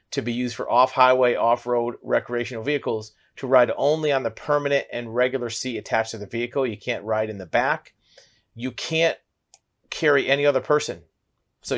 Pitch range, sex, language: 110-135 Hz, male, English